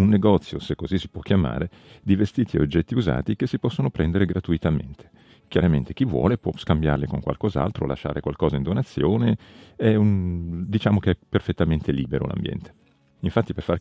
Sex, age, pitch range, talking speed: male, 40-59, 75-105 Hz, 170 wpm